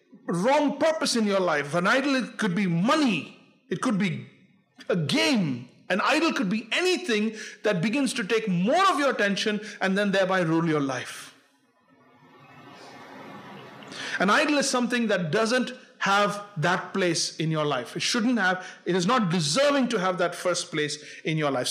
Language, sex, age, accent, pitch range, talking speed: English, male, 50-69, Indian, 175-245 Hz, 170 wpm